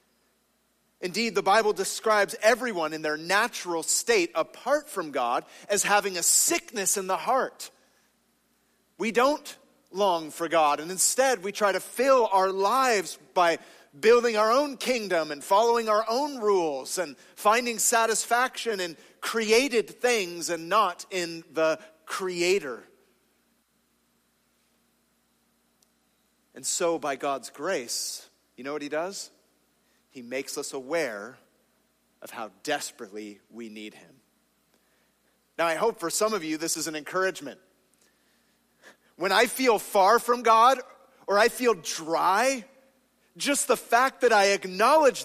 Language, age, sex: English, 30-49, male